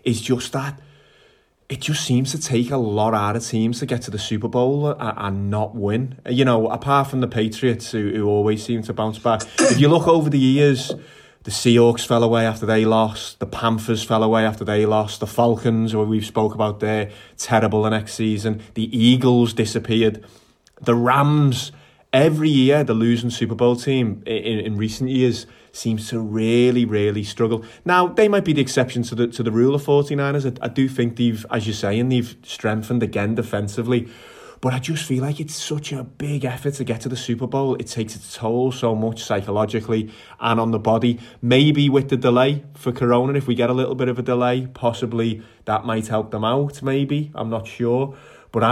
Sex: male